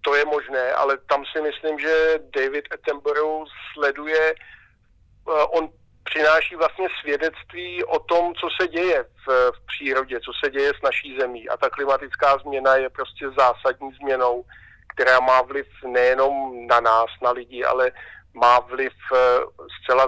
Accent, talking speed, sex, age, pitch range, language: native, 145 wpm, male, 50-69, 135-160 Hz, Czech